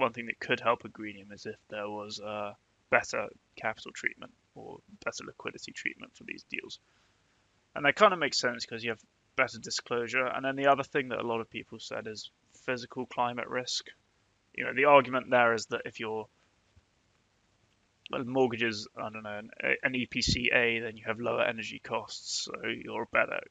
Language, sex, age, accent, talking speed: English, male, 20-39, British, 185 wpm